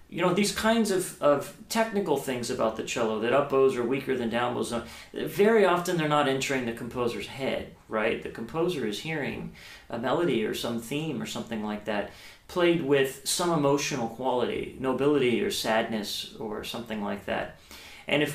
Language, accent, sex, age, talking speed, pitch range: English, American, male, 40-59, 175 wpm, 115-145 Hz